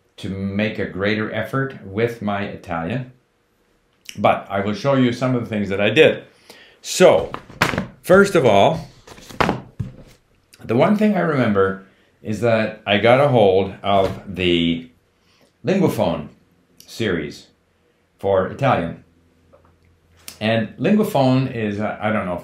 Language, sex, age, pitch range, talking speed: English, male, 50-69, 90-125 Hz, 130 wpm